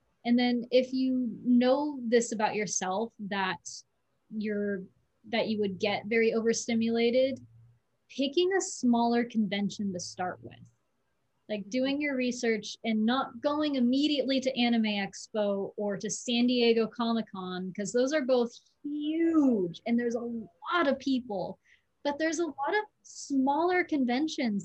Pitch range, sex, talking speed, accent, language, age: 210-260 Hz, female, 140 wpm, American, English, 20-39